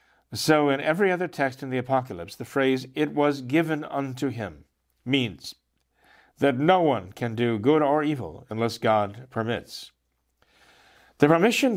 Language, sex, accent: English, male, American